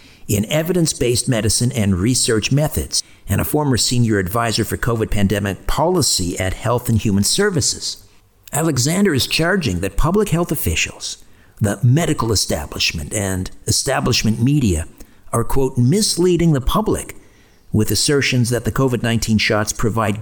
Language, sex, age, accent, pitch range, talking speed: English, male, 50-69, American, 105-130 Hz, 135 wpm